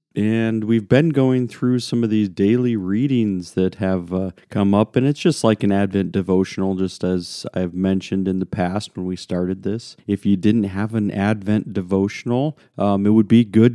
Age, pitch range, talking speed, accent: 40-59, 95-115 Hz, 195 wpm, American